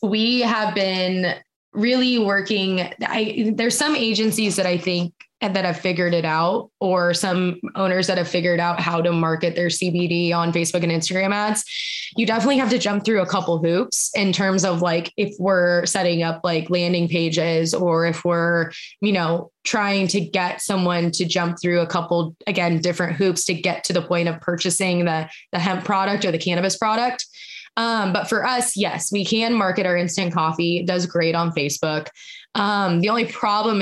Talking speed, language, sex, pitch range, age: 185 wpm, English, female, 170-205 Hz, 20-39